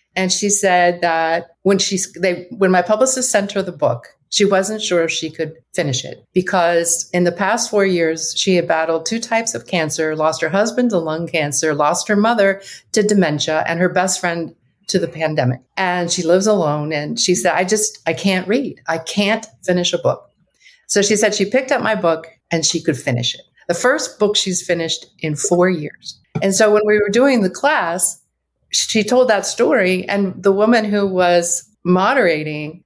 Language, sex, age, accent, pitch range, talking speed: English, female, 50-69, American, 165-210 Hz, 200 wpm